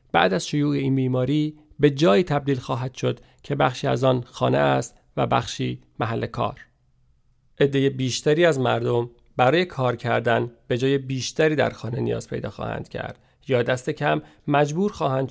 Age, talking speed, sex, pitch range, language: 40-59, 160 wpm, male, 125-150 Hz, Persian